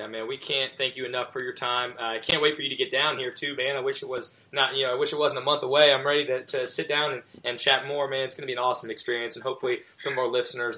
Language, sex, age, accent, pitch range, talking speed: English, male, 20-39, American, 125-145 Hz, 315 wpm